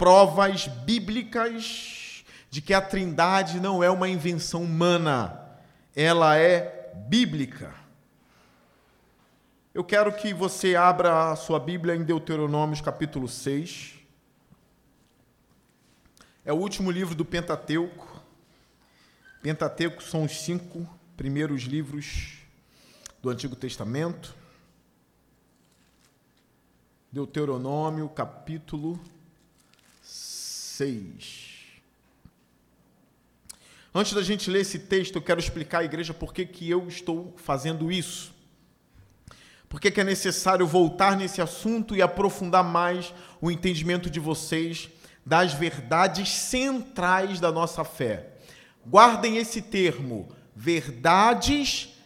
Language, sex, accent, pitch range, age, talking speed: Portuguese, male, Brazilian, 155-195 Hz, 40-59, 100 wpm